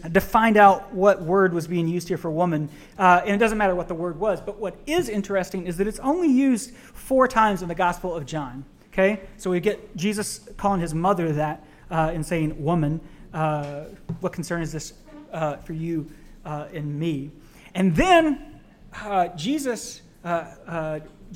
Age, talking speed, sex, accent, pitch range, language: 30-49, 185 wpm, male, American, 160-205 Hz, English